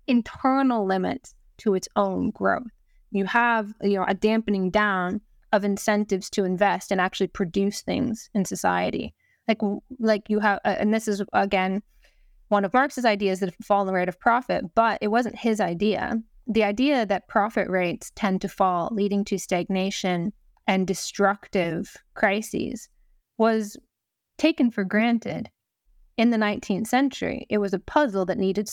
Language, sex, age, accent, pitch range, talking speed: English, female, 20-39, American, 195-225 Hz, 160 wpm